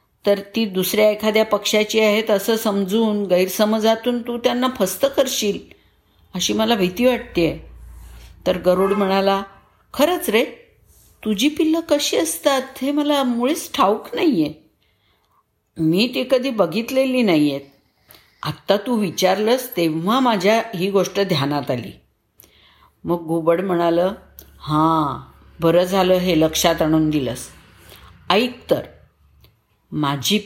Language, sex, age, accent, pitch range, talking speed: Marathi, female, 50-69, native, 155-225 Hz, 115 wpm